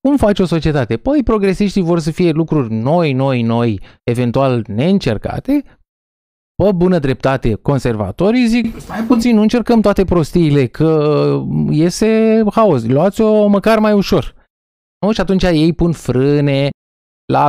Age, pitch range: 20-39, 125-205 Hz